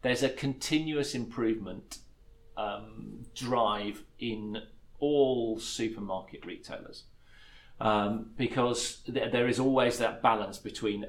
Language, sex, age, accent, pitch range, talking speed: English, male, 40-59, British, 105-125 Hz, 105 wpm